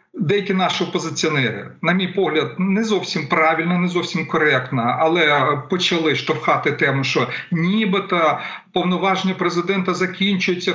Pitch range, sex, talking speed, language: 160-195 Hz, male, 115 wpm, Ukrainian